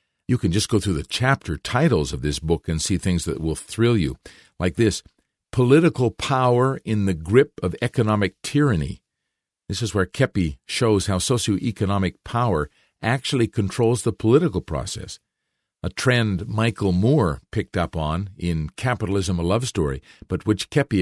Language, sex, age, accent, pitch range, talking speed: English, male, 50-69, American, 90-120 Hz, 160 wpm